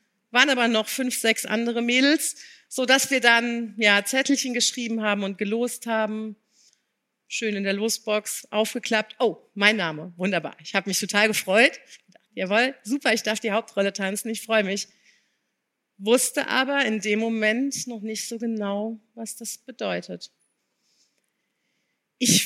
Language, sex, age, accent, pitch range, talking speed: German, female, 40-59, German, 220-265 Hz, 145 wpm